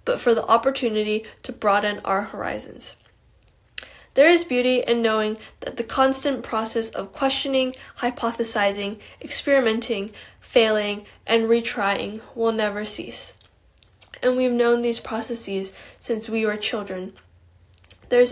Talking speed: 120 wpm